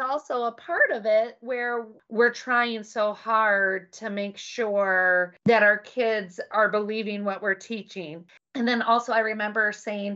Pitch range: 200-235 Hz